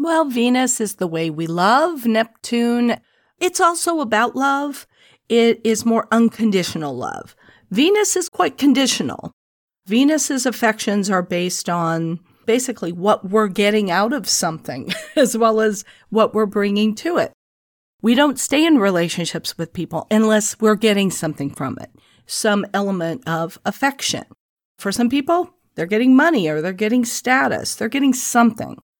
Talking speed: 145 wpm